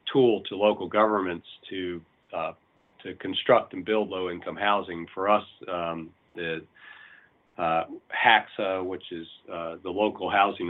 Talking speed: 135 wpm